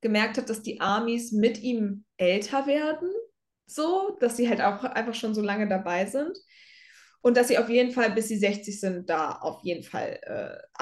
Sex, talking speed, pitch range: female, 195 wpm, 210-250 Hz